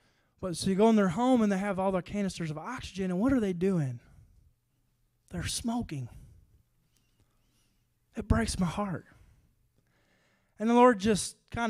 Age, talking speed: 20-39, 160 wpm